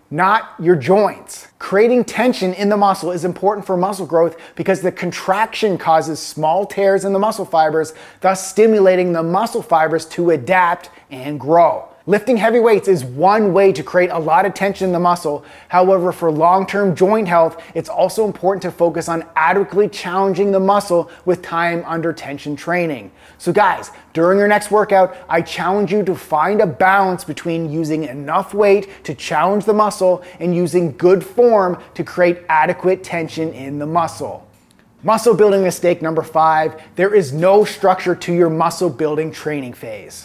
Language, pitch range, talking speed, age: English, 165-200 Hz, 170 wpm, 30-49